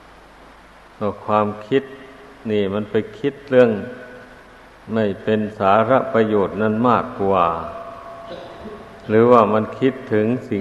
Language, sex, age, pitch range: Thai, male, 60-79, 105-115 Hz